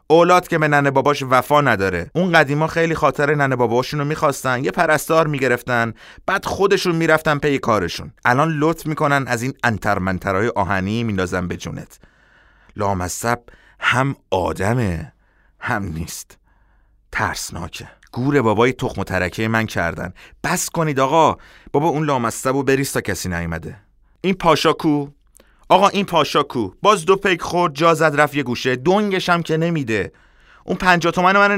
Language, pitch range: Persian, 105-155 Hz